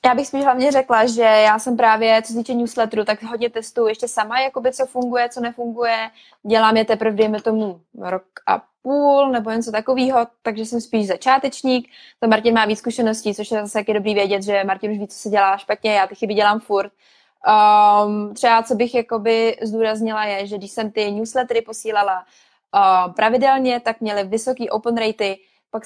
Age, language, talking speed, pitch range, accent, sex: 20-39, Czech, 190 wpm, 210-235 Hz, native, female